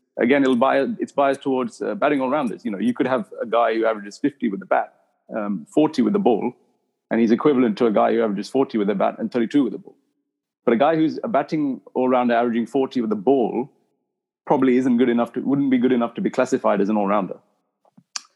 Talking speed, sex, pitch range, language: 240 wpm, male, 115-155 Hz, English